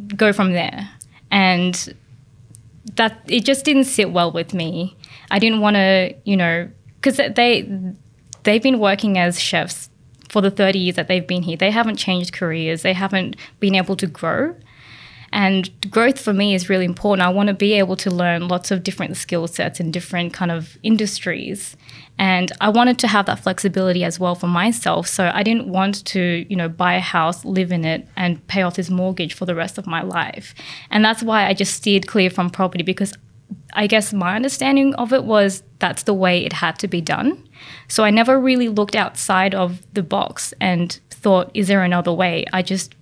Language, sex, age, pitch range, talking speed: English, female, 20-39, 175-205 Hz, 200 wpm